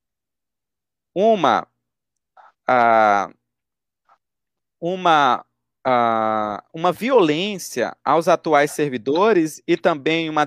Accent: Brazilian